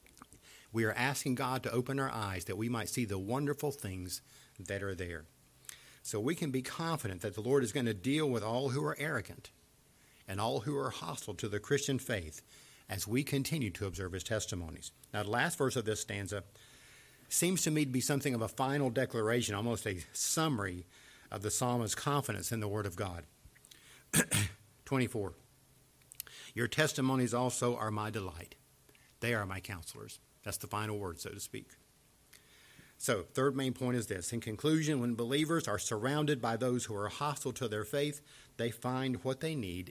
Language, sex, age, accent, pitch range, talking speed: English, male, 50-69, American, 105-135 Hz, 185 wpm